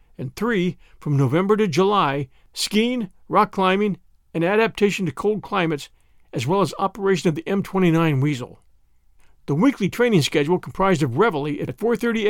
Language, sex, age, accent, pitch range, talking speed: English, male, 50-69, American, 155-205 Hz, 150 wpm